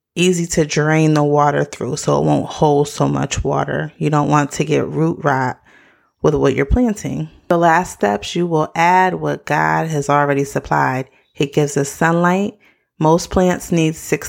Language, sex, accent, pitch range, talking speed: English, female, American, 150-185 Hz, 180 wpm